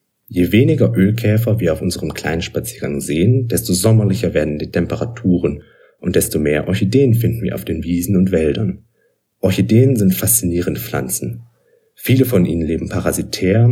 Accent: German